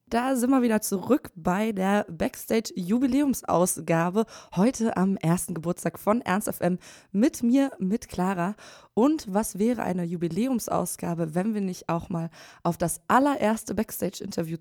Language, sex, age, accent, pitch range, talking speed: German, female, 20-39, German, 185-230 Hz, 135 wpm